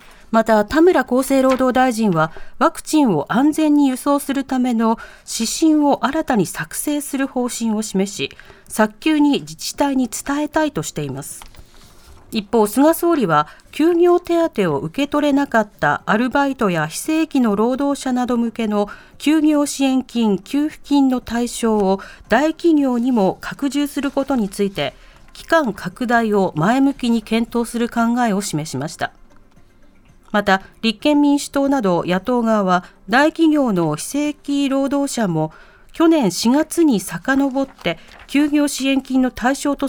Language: Japanese